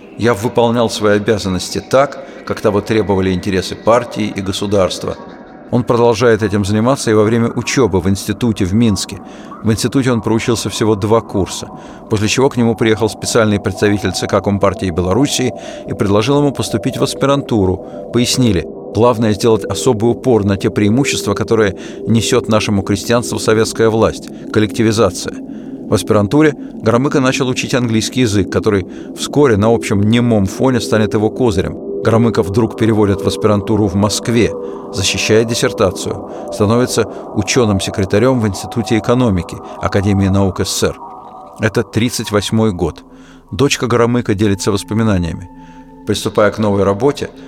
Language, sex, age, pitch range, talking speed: Russian, male, 50-69, 100-120 Hz, 135 wpm